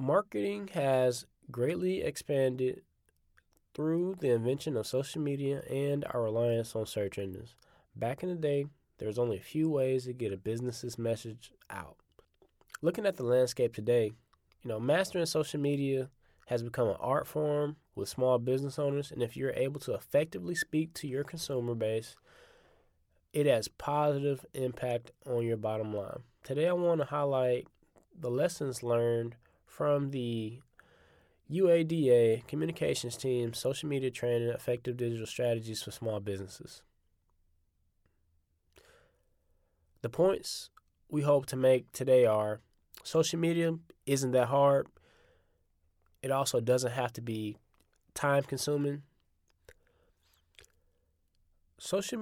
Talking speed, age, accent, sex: 130 wpm, 20-39, American, male